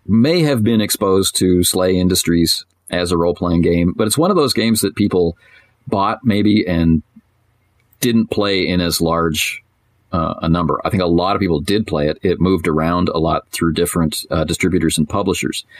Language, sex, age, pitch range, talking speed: English, male, 40-59, 85-105 Hz, 190 wpm